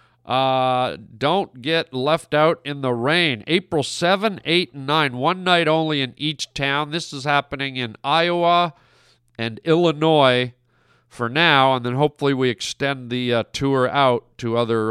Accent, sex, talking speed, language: American, male, 155 wpm, English